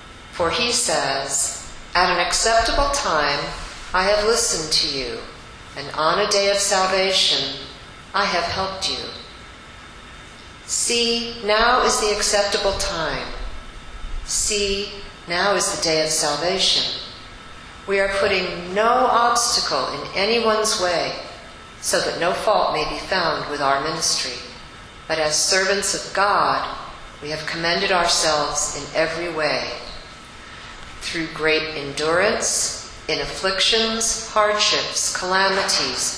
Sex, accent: female, American